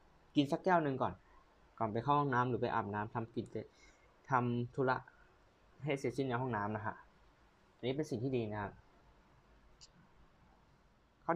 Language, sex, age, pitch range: Thai, male, 20-39, 110-140 Hz